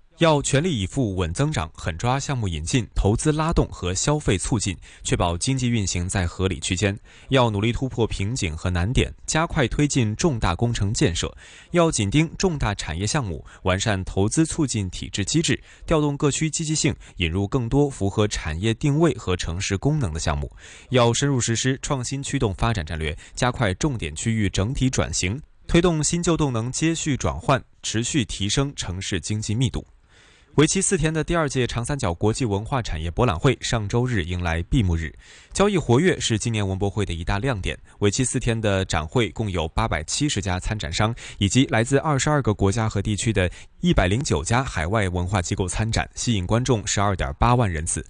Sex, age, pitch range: male, 20-39, 90-135 Hz